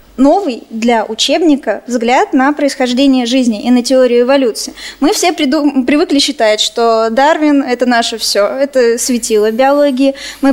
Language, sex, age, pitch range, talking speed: Russian, female, 20-39, 240-290 Hz, 150 wpm